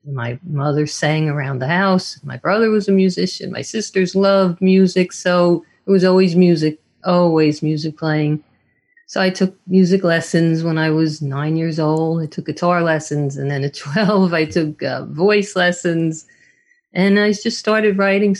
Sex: female